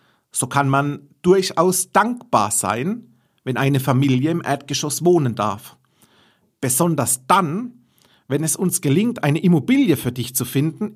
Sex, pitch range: male, 130-190 Hz